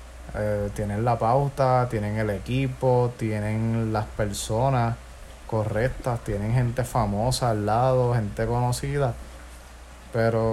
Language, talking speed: Spanish, 110 wpm